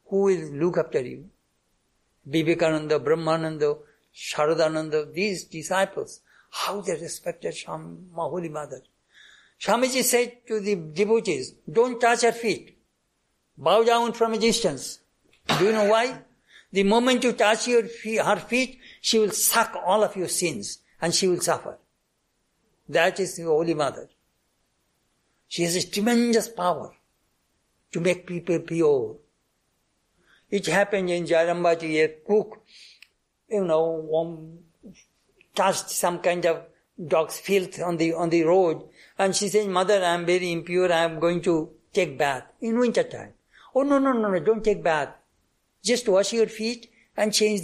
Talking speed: 145 wpm